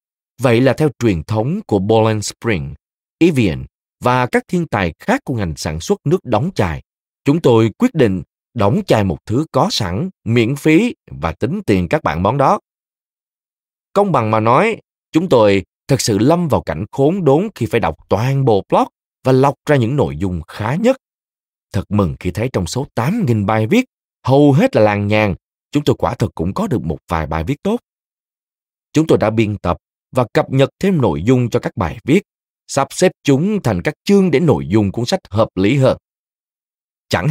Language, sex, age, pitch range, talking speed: Vietnamese, male, 20-39, 100-155 Hz, 200 wpm